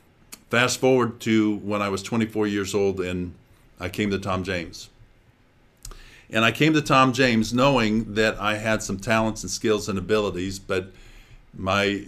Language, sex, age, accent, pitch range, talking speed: English, male, 50-69, American, 95-115 Hz, 165 wpm